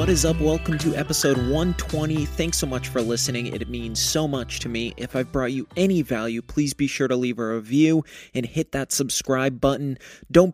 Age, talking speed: 30-49, 210 wpm